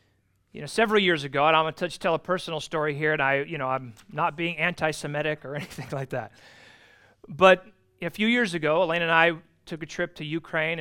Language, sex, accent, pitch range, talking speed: English, male, American, 135-170 Hz, 215 wpm